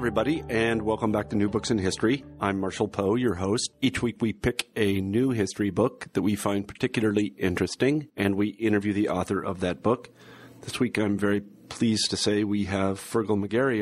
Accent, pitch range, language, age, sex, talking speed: American, 95-110 Hz, English, 40-59, male, 205 wpm